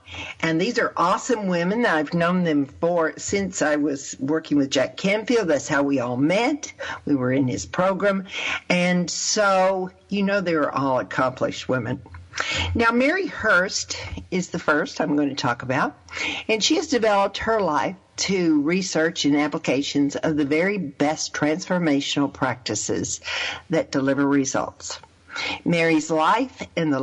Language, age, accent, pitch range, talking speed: English, 50-69, American, 145-190 Hz, 155 wpm